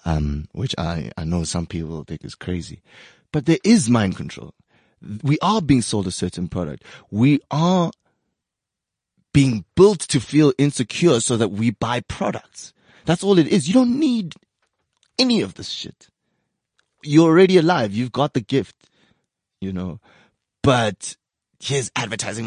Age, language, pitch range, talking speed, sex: 20-39, English, 105-145 Hz, 150 wpm, male